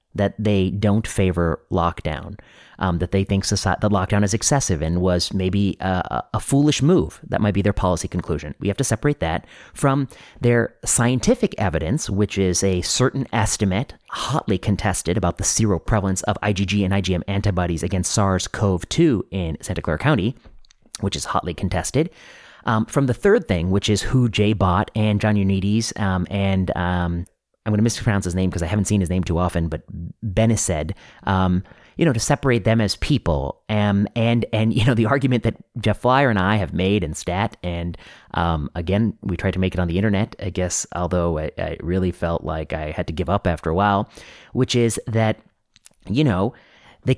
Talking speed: 190 wpm